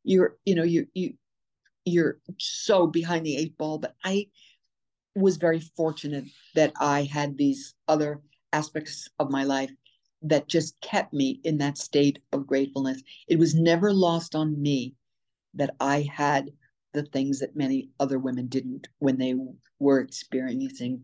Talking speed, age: 155 wpm, 60-79